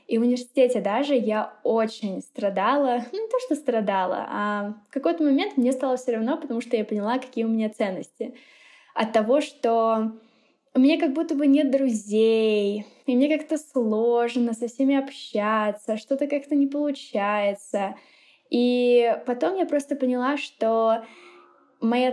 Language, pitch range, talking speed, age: Russian, 225-275 Hz, 150 wpm, 10-29